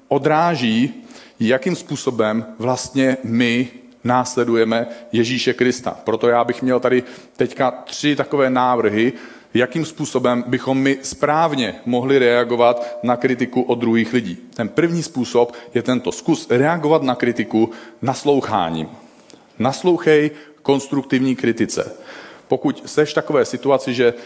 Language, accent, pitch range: Czech, native, 120-145 Hz